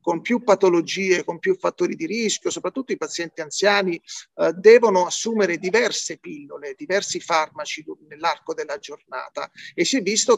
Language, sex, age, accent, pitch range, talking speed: Italian, male, 40-59, native, 180-240 Hz, 150 wpm